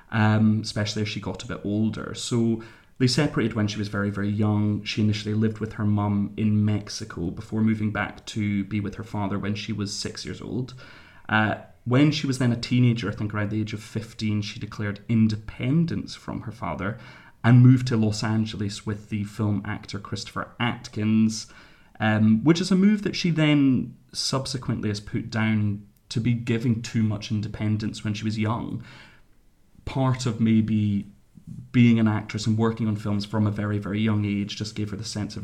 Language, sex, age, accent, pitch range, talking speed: English, male, 30-49, British, 105-120 Hz, 195 wpm